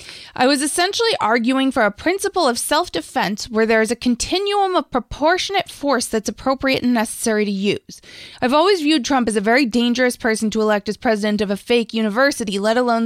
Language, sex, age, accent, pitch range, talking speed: English, female, 20-39, American, 200-255 Hz, 195 wpm